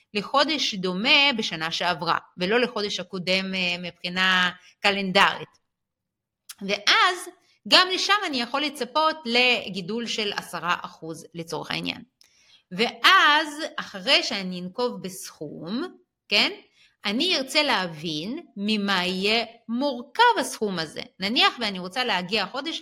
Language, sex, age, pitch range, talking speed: Hebrew, female, 30-49, 185-270 Hz, 105 wpm